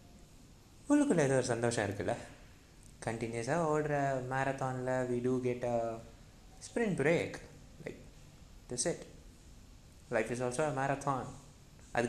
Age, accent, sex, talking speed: 20-39, native, male, 100 wpm